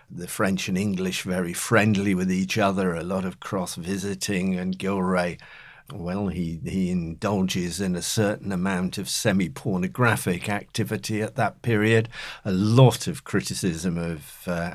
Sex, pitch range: male, 90-105 Hz